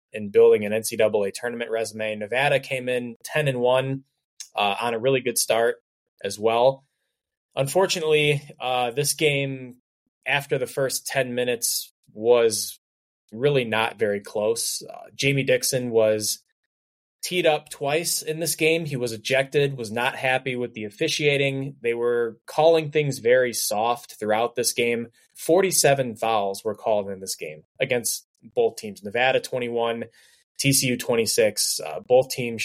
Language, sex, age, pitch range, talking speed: English, male, 20-39, 110-145 Hz, 145 wpm